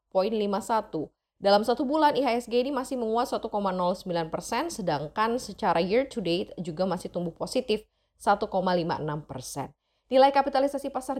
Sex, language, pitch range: female, Indonesian, 180-230 Hz